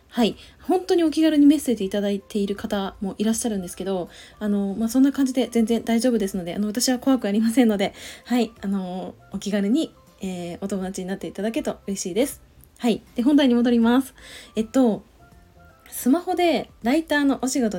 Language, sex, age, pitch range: Japanese, female, 20-39, 195-260 Hz